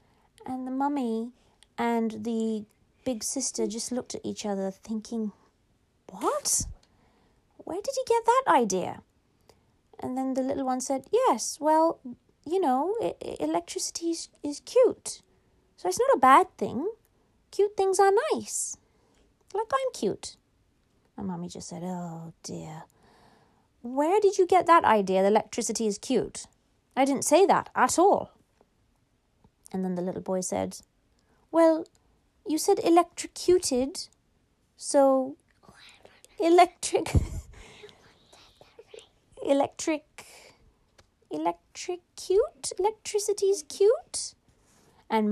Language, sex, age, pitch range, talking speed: English, female, 30-49, 220-355 Hz, 115 wpm